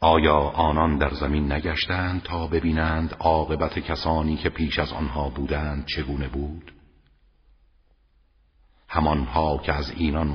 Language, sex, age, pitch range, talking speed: Persian, male, 50-69, 70-80 Hz, 115 wpm